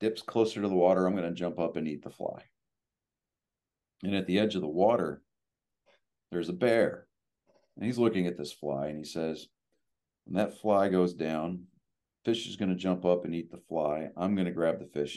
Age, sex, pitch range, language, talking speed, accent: 40-59, male, 85-105 Hz, English, 215 wpm, American